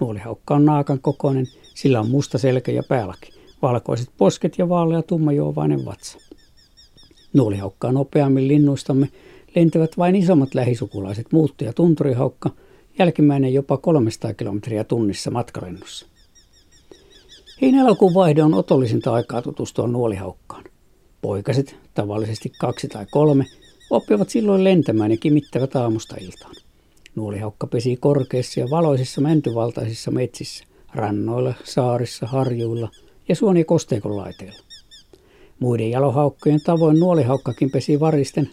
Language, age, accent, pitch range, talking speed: Finnish, 60-79, native, 115-150 Hz, 110 wpm